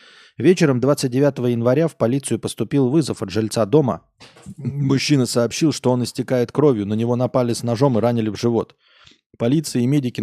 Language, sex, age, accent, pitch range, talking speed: Russian, male, 20-39, native, 110-145 Hz, 165 wpm